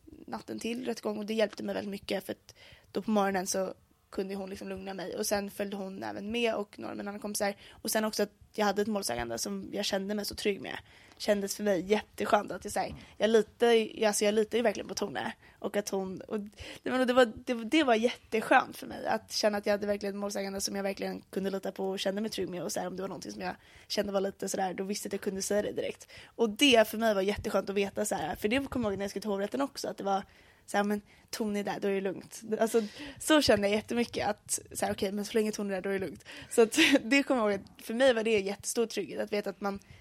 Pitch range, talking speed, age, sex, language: 195-225 Hz, 270 wpm, 20-39, female, Swedish